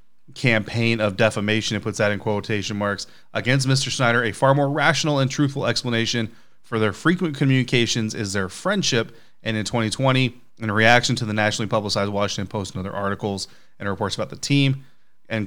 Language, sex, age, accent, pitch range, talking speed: English, male, 30-49, American, 105-125 Hz, 180 wpm